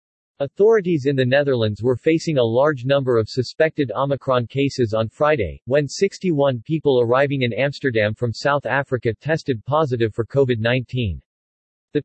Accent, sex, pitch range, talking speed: American, male, 115-150 Hz, 145 wpm